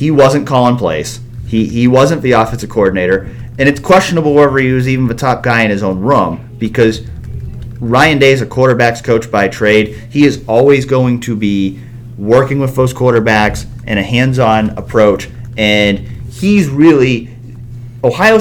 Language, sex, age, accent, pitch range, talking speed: English, male, 30-49, American, 110-135 Hz, 165 wpm